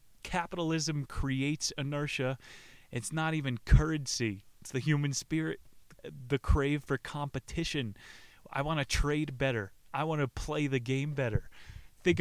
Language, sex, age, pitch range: English, male, 20-39, 115-145 Hz